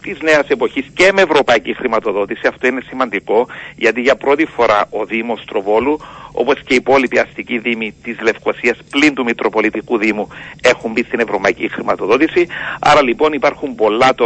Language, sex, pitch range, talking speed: Greek, male, 125-170 Hz, 170 wpm